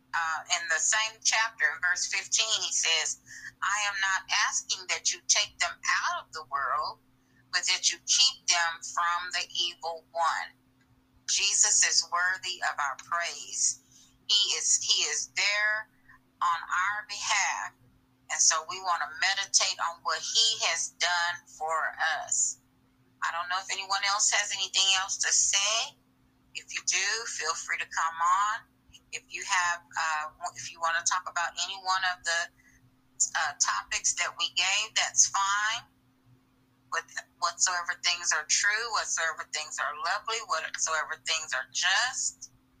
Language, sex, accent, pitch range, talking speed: English, female, American, 130-200 Hz, 155 wpm